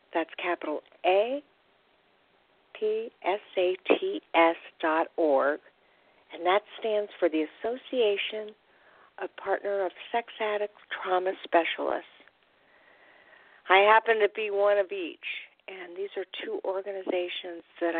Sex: female